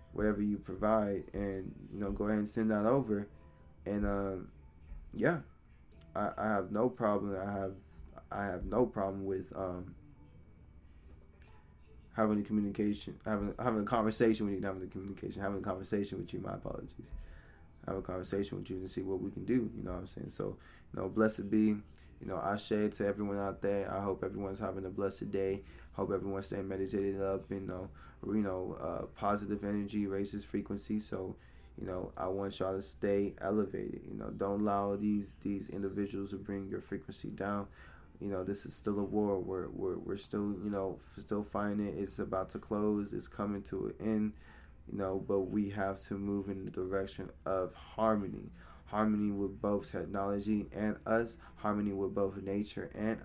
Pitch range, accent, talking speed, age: 95-105 Hz, American, 190 wpm, 20-39